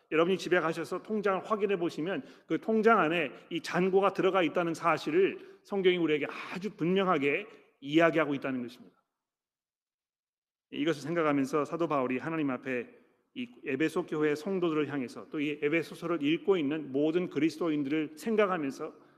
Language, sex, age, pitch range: Korean, male, 40-59, 155-200 Hz